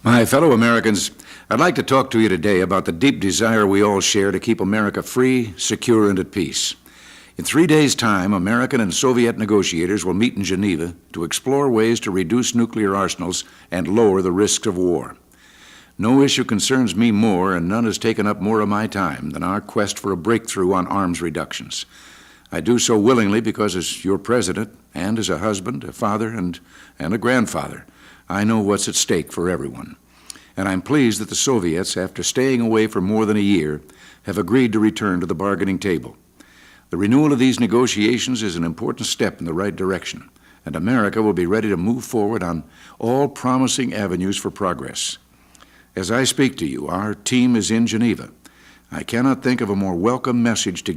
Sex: male